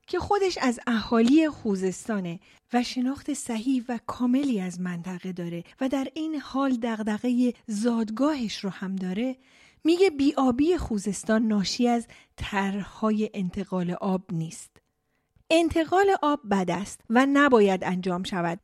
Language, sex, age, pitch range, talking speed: Persian, female, 30-49, 200-275 Hz, 125 wpm